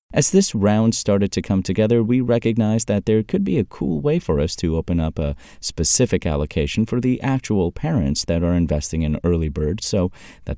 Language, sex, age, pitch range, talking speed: English, male, 30-49, 80-110 Hz, 205 wpm